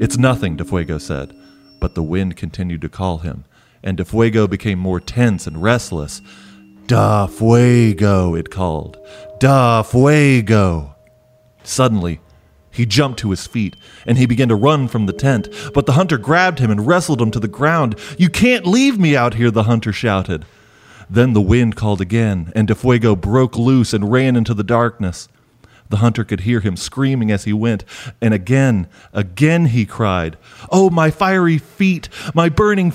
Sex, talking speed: male, 170 wpm